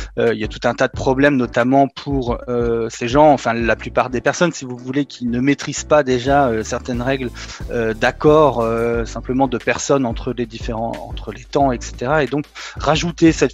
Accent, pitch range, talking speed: French, 120-145 Hz, 205 wpm